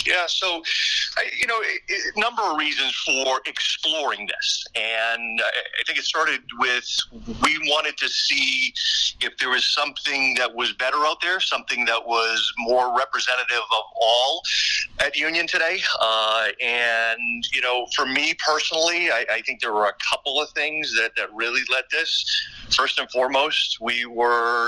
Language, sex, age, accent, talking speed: English, male, 40-59, American, 165 wpm